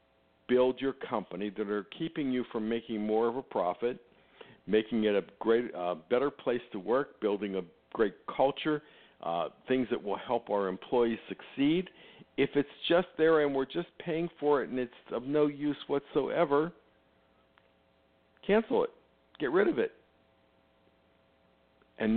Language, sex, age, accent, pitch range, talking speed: English, male, 50-69, American, 85-130 Hz, 155 wpm